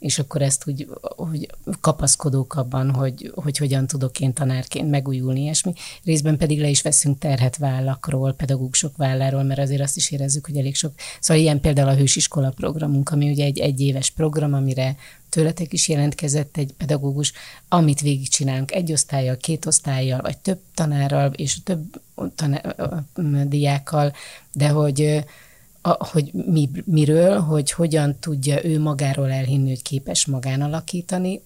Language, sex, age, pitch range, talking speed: Hungarian, female, 30-49, 140-155 Hz, 150 wpm